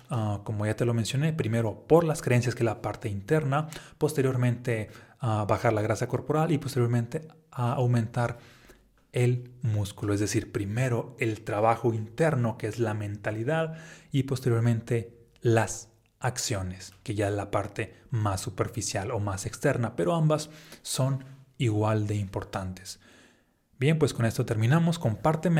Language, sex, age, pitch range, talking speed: Spanish, male, 30-49, 110-135 Hz, 145 wpm